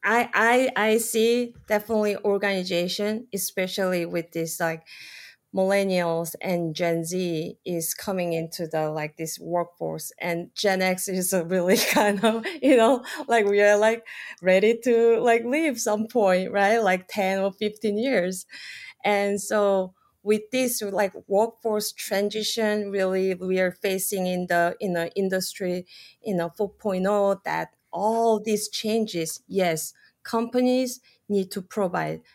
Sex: female